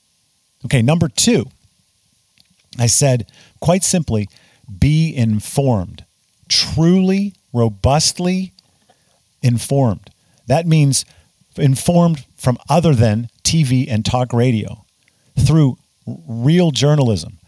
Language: English